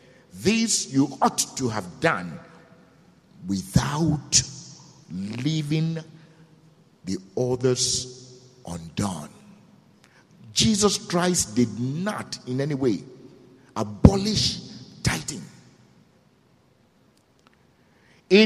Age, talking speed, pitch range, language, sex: 50-69, 70 wpm, 135-225 Hz, English, male